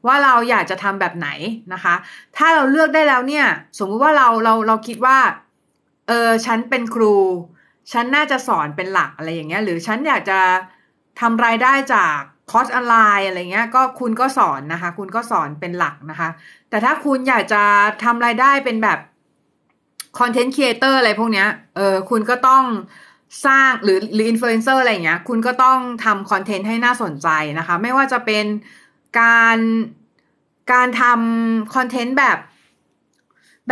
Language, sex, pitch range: Thai, female, 195-250 Hz